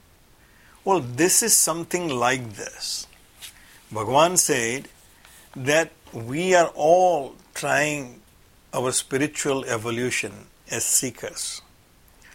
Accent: Indian